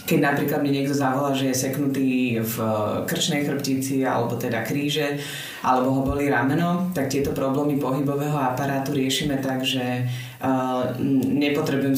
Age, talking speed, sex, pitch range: 20-39, 135 wpm, female, 130-145 Hz